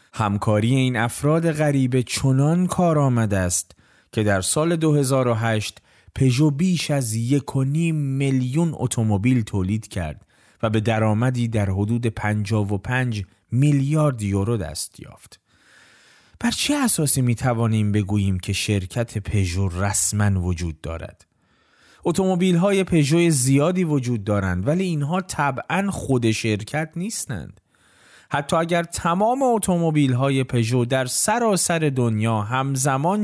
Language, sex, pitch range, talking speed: Persian, male, 105-150 Hz, 120 wpm